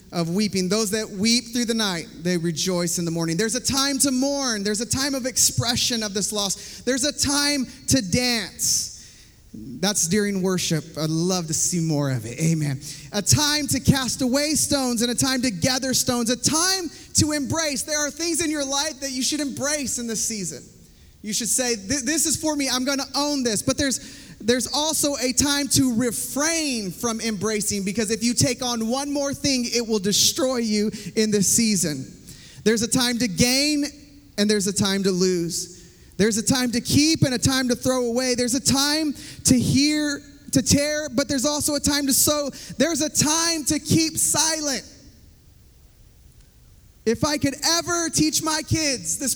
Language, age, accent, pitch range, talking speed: English, 30-49, American, 205-285 Hz, 190 wpm